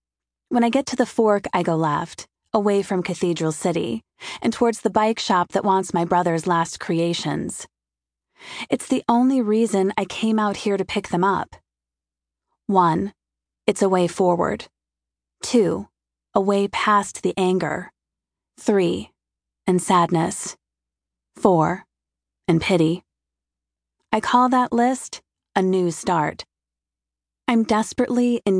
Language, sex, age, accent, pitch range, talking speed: English, female, 30-49, American, 155-215 Hz, 130 wpm